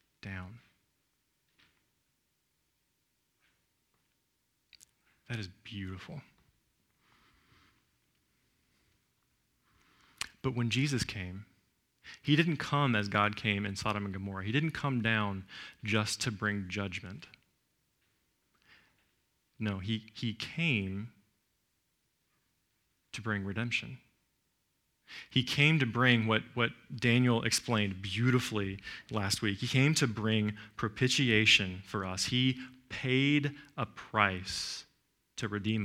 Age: 40-59